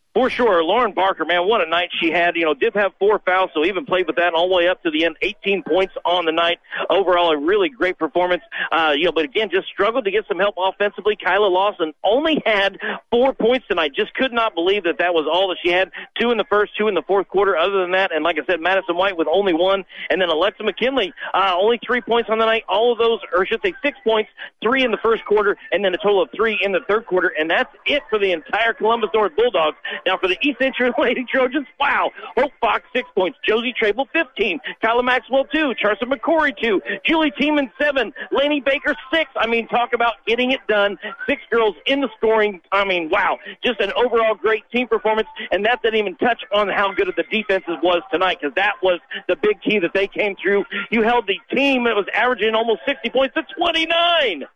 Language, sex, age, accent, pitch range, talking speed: English, male, 40-59, American, 185-250 Hz, 235 wpm